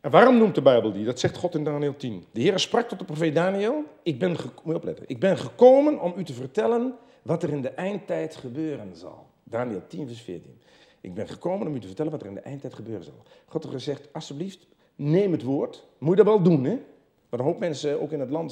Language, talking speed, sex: Dutch, 245 wpm, male